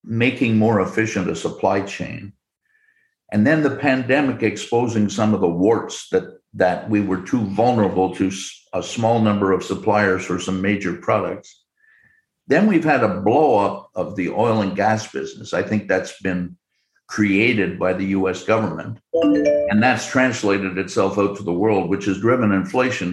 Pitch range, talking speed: 100-135 Hz, 165 wpm